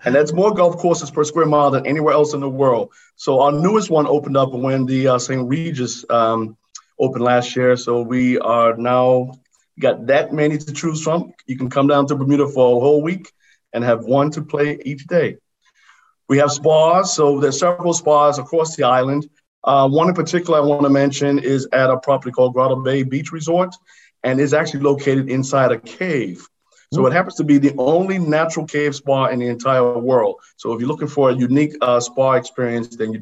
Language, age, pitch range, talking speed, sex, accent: English, 50-69, 125-150 Hz, 210 wpm, male, American